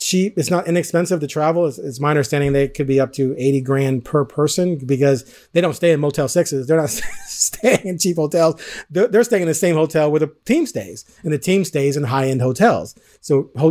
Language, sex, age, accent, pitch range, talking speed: English, male, 30-49, American, 130-160 Hz, 230 wpm